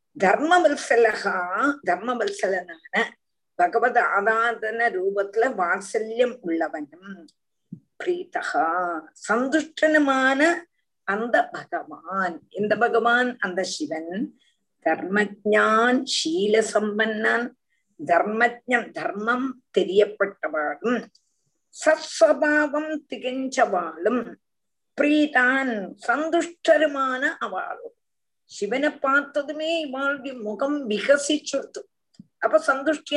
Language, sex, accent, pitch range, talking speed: Tamil, female, native, 215-310 Hz, 65 wpm